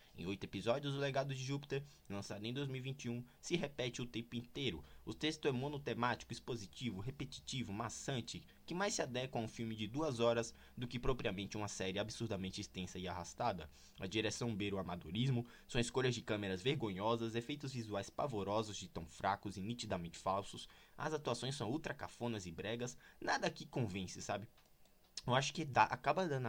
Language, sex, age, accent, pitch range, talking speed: Portuguese, male, 20-39, Brazilian, 100-130 Hz, 170 wpm